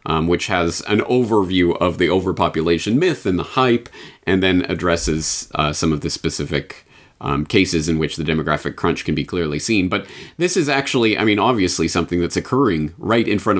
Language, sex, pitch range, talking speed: English, male, 85-115 Hz, 195 wpm